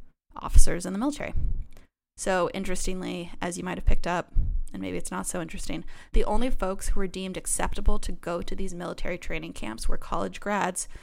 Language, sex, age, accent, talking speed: English, female, 20-39, American, 185 wpm